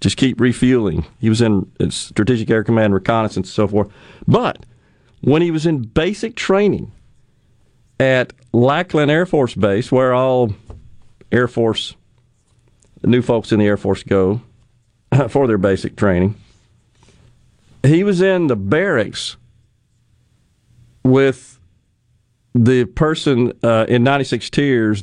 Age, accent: 40-59, American